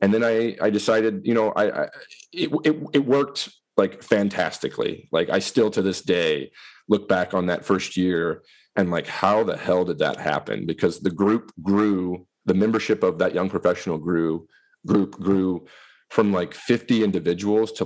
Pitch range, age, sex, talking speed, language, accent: 90-110 Hz, 30-49, male, 180 wpm, English, American